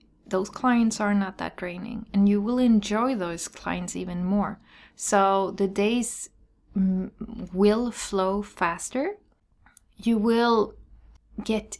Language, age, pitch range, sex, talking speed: English, 20-39, 190-230 Hz, female, 115 wpm